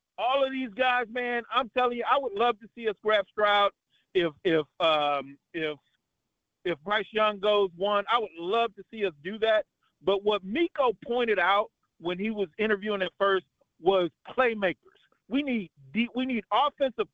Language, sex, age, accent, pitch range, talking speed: English, male, 40-59, American, 180-250 Hz, 180 wpm